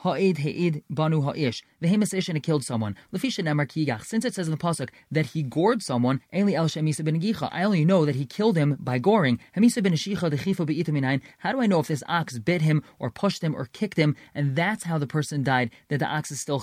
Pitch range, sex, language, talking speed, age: 145-190 Hz, male, English, 200 wpm, 30-49